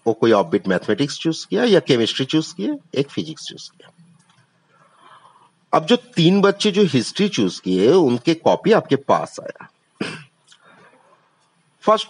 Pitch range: 130-185 Hz